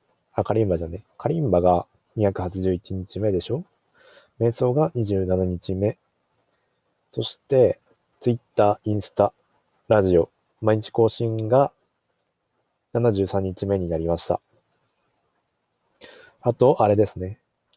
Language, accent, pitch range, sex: Japanese, native, 95-120 Hz, male